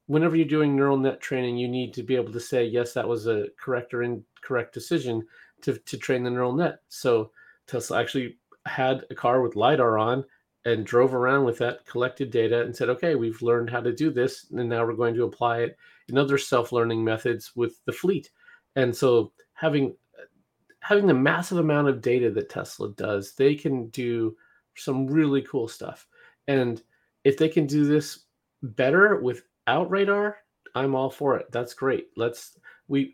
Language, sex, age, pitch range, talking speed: English, male, 30-49, 120-160 Hz, 185 wpm